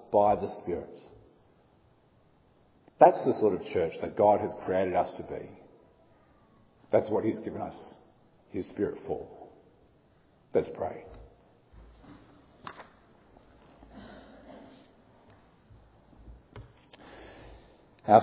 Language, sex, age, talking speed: English, male, 50-69, 85 wpm